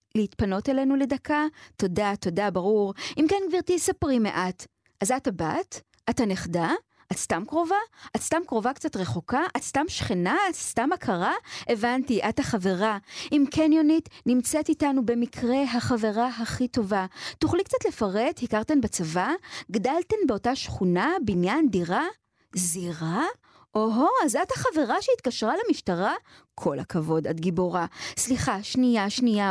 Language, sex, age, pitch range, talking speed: Hebrew, female, 30-49, 200-285 Hz, 135 wpm